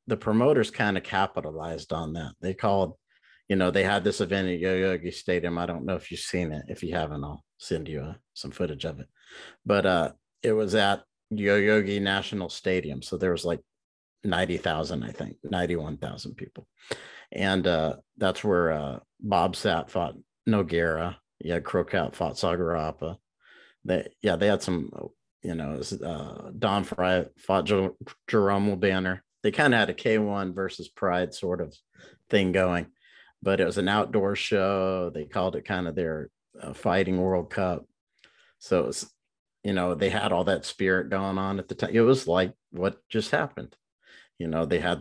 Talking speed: 175 wpm